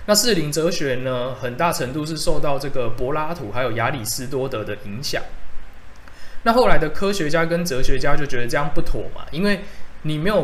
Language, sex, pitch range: Chinese, male, 125-170 Hz